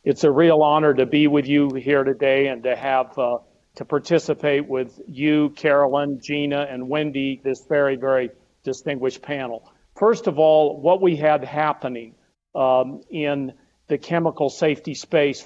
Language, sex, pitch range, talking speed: English, male, 135-160 Hz, 155 wpm